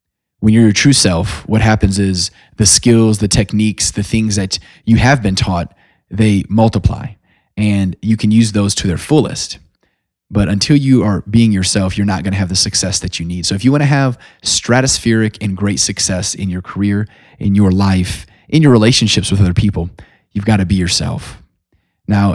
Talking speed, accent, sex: 195 wpm, American, male